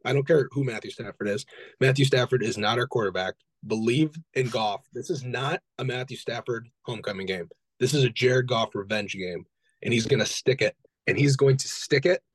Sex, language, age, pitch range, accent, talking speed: male, English, 20-39, 115-140 Hz, American, 210 wpm